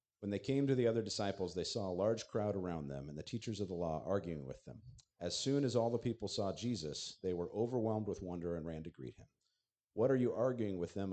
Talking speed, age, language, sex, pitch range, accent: 255 wpm, 50-69, English, male, 85-115 Hz, American